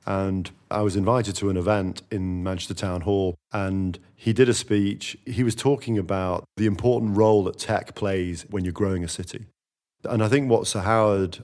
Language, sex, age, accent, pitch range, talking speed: English, male, 40-59, British, 95-110 Hz, 195 wpm